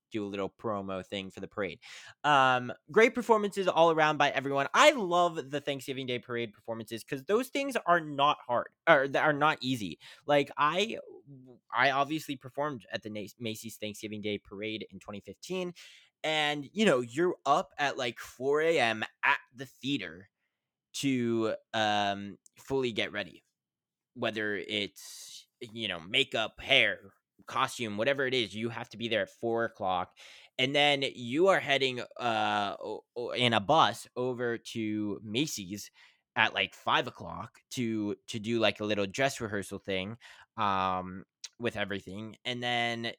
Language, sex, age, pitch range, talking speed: English, male, 20-39, 110-145 Hz, 155 wpm